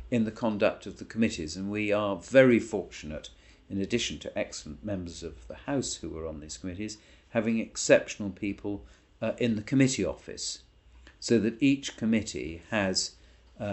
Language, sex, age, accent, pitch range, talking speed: English, male, 50-69, British, 85-115 Hz, 160 wpm